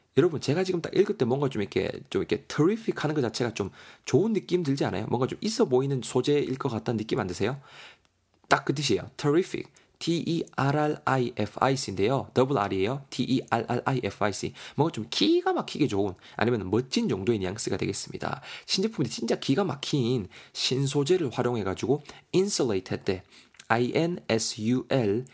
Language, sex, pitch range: Korean, male, 110-145 Hz